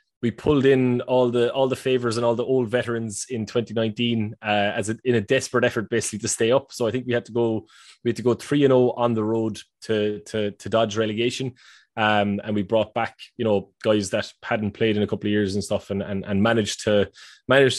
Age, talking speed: 20-39, 245 wpm